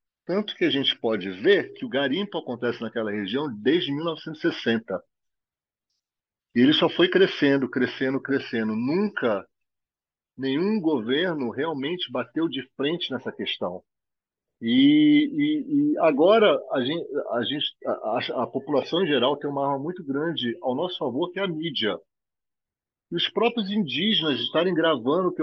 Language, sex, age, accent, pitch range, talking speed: Portuguese, male, 40-59, Brazilian, 130-195 Hz, 140 wpm